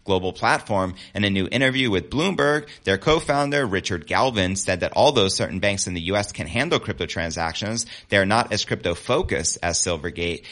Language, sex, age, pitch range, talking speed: English, male, 30-49, 90-115 Hz, 170 wpm